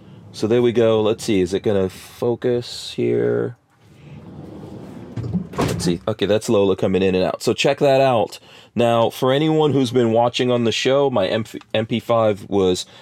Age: 30-49